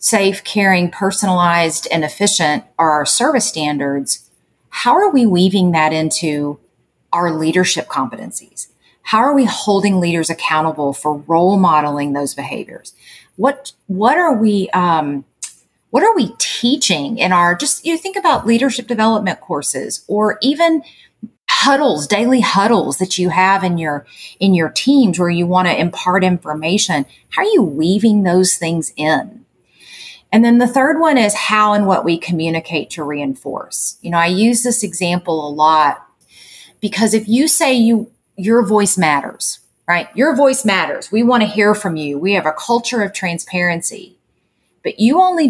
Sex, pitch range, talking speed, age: female, 165-230 Hz, 160 wpm, 40-59